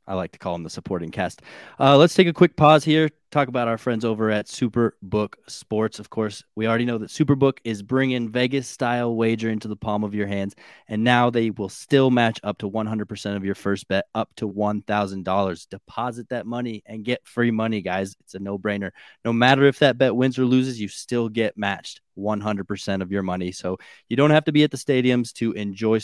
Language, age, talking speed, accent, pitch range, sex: English, 20-39, 215 wpm, American, 100-125 Hz, male